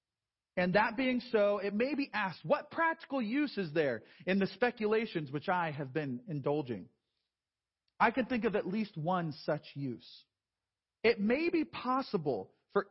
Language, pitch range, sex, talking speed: English, 160-220 Hz, male, 165 wpm